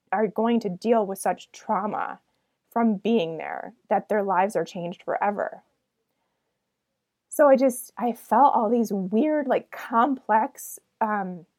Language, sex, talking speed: English, female, 140 wpm